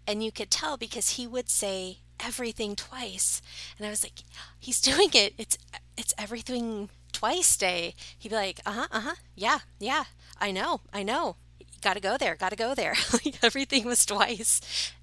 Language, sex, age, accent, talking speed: English, female, 30-49, American, 180 wpm